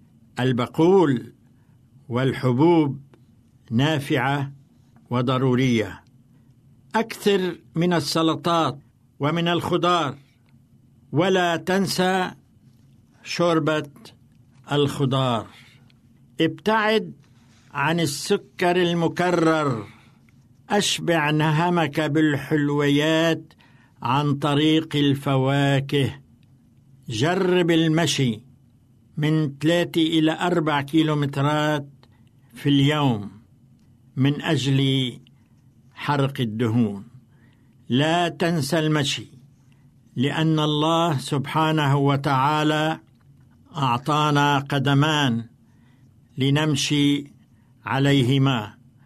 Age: 60-79